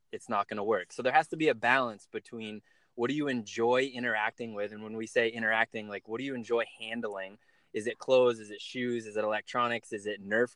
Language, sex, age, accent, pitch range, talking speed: English, male, 20-39, American, 110-125 Hz, 240 wpm